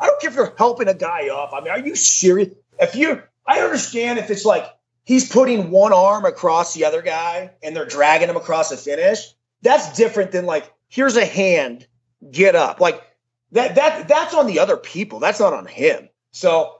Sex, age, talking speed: male, 30-49, 205 wpm